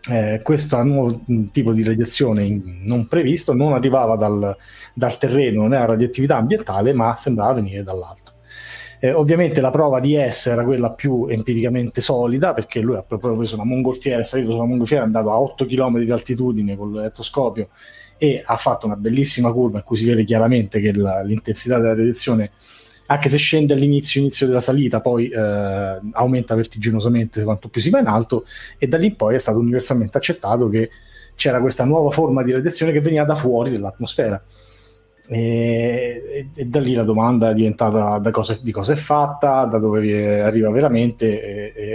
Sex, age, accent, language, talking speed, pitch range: male, 30-49, native, Italian, 180 wpm, 110-130 Hz